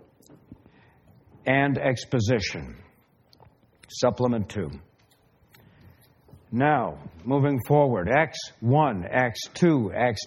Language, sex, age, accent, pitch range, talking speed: English, male, 60-79, American, 115-150 Hz, 70 wpm